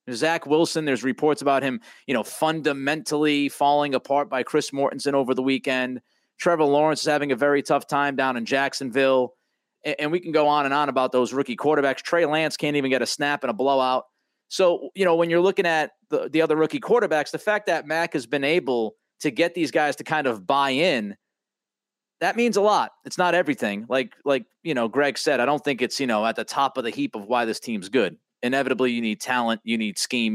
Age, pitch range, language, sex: 30-49, 130-160 Hz, English, male